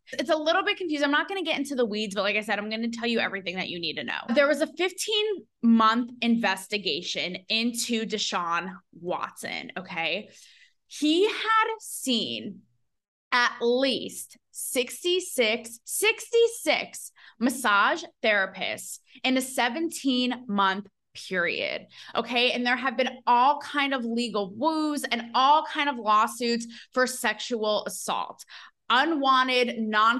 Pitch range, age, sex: 220-295 Hz, 20-39, female